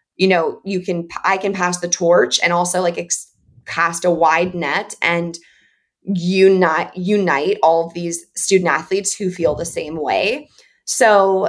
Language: English